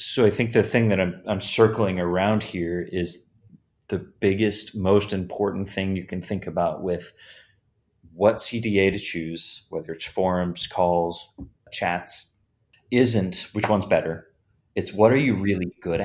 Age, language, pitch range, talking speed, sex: 30-49, English, 90-110 Hz, 155 wpm, male